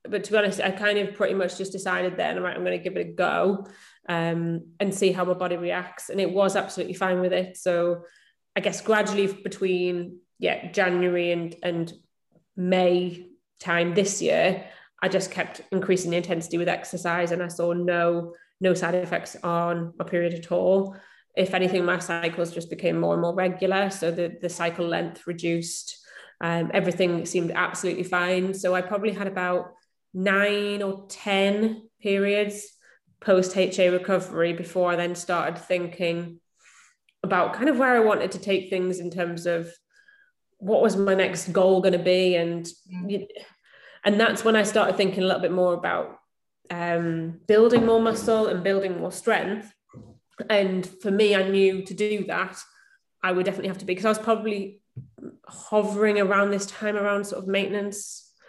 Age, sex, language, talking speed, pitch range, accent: 20-39, female, English, 175 wpm, 175-200 Hz, British